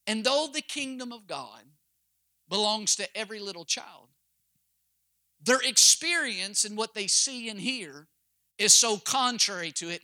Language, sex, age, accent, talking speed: English, male, 50-69, American, 145 wpm